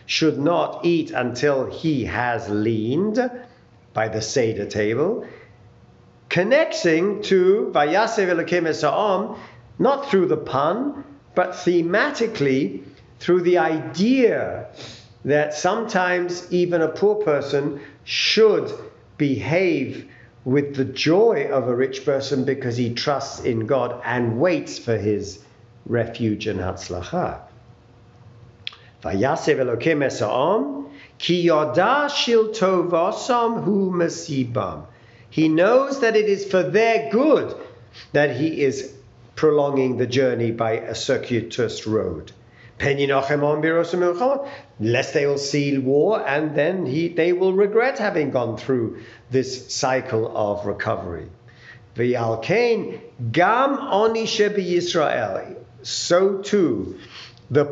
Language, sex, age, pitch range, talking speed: English, male, 50-69, 120-185 Hz, 95 wpm